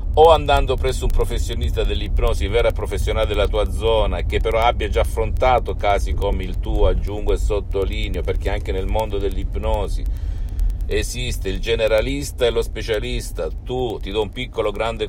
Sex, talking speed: male, 160 wpm